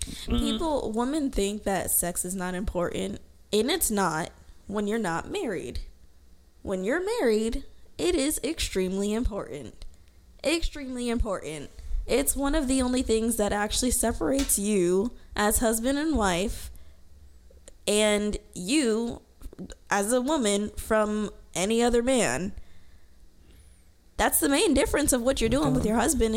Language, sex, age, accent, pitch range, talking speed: English, female, 10-29, American, 185-230 Hz, 130 wpm